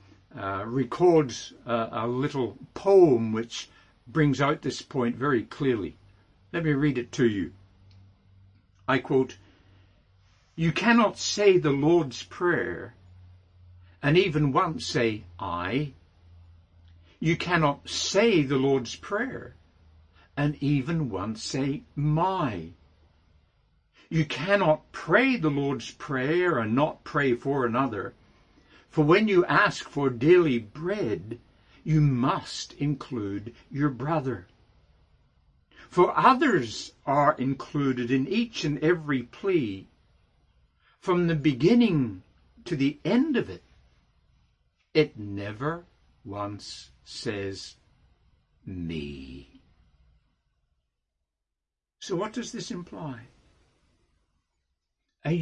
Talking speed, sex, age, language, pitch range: 100 wpm, male, 60-79, English, 90-150 Hz